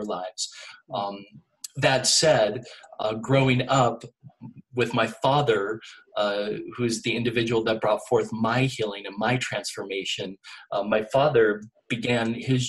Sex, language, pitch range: male, English, 105-120 Hz